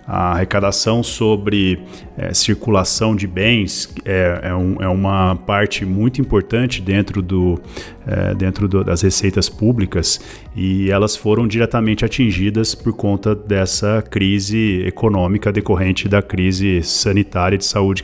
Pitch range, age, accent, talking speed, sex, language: 95-105 Hz, 40-59, Brazilian, 115 wpm, male, Portuguese